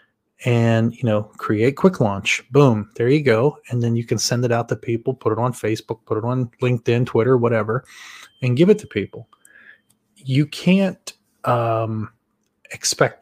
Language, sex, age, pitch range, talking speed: English, male, 20-39, 115-130 Hz, 170 wpm